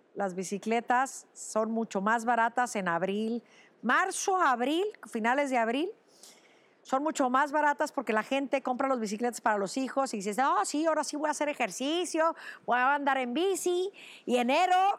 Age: 50-69